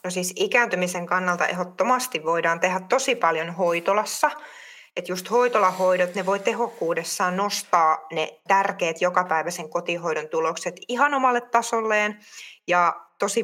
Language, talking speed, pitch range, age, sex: Finnish, 120 wpm, 170-230 Hz, 20-39, female